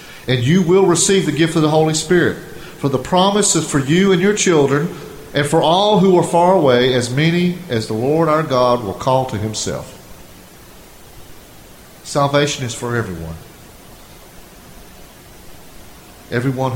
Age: 40-59